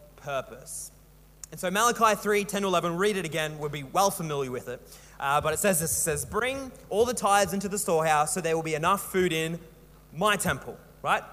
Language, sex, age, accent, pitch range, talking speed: English, male, 20-39, Australian, 170-230 Hz, 215 wpm